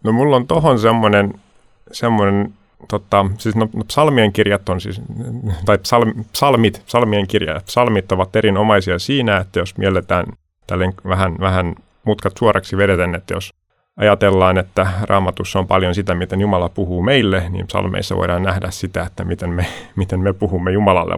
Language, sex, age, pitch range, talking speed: Finnish, male, 30-49, 95-110 Hz, 155 wpm